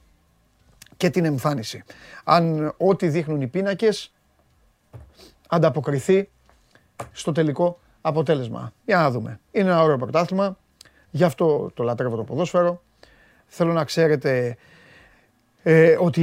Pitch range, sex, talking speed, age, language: 125-165 Hz, male, 105 wpm, 30-49, Greek